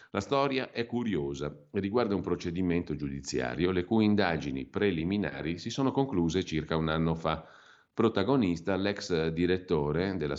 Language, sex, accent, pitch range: Italian, male, native, 75-100 Hz